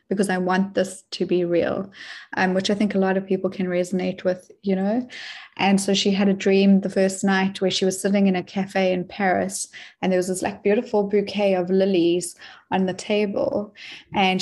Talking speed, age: 210 wpm, 20-39